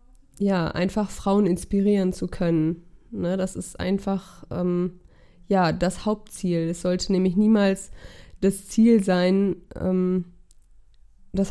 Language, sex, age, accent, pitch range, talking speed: German, female, 20-39, German, 175-195 Hz, 120 wpm